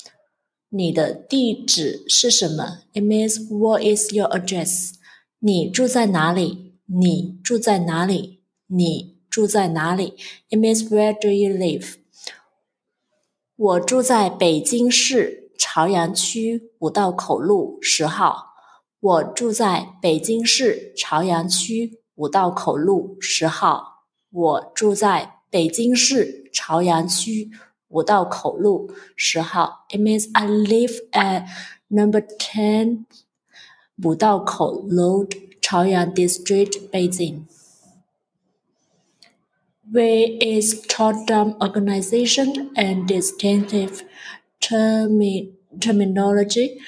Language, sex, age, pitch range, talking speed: English, female, 20-39, 180-220 Hz, 50 wpm